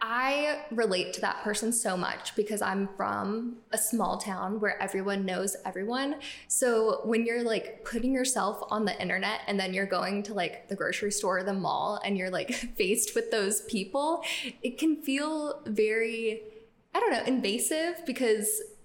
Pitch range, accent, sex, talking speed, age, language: 195-230 Hz, American, female, 170 wpm, 10-29, English